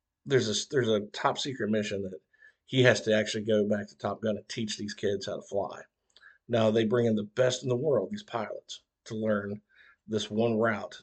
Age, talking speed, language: 50-69, 210 wpm, English